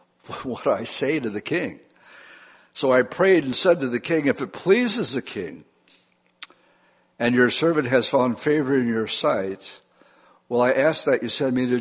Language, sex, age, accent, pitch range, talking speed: English, male, 60-79, American, 120-145 Hz, 190 wpm